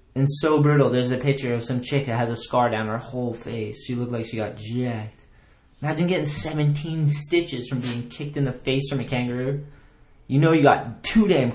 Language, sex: English, male